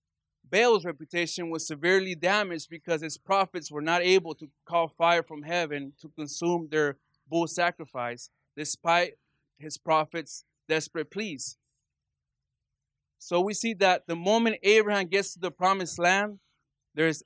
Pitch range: 150-185 Hz